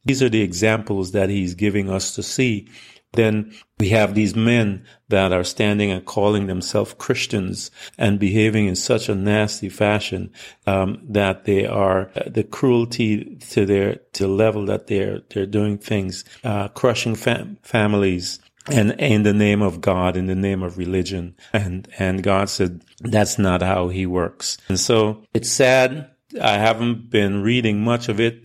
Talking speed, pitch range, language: 175 wpm, 100-125 Hz, English